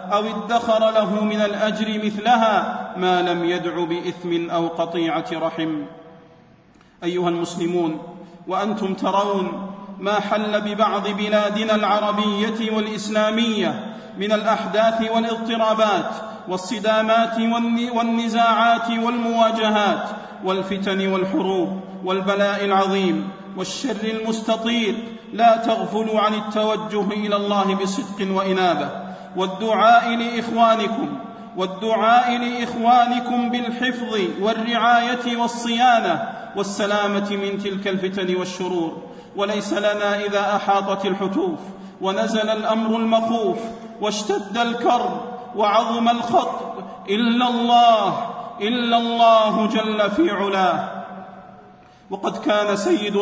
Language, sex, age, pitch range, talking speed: Arabic, male, 40-59, 195-230 Hz, 85 wpm